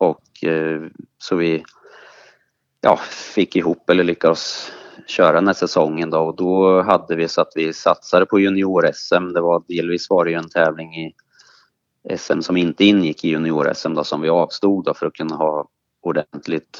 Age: 30-49